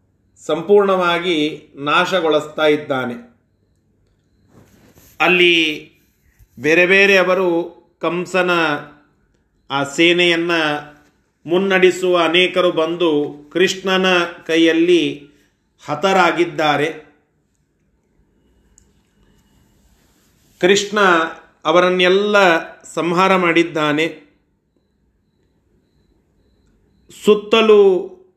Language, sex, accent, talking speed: Kannada, male, native, 40 wpm